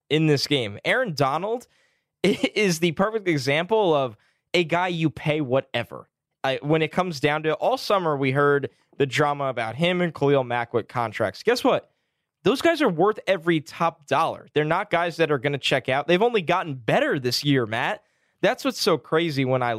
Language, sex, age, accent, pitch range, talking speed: English, male, 10-29, American, 120-170 Hz, 195 wpm